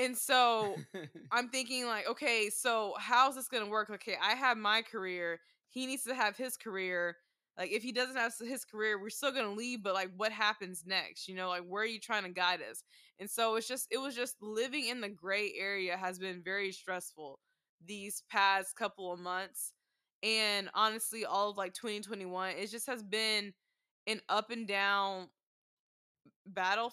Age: 20-39